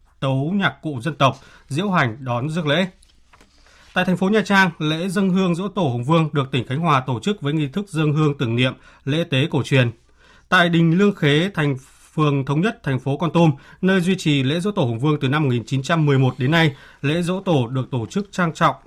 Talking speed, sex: 230 wpm, male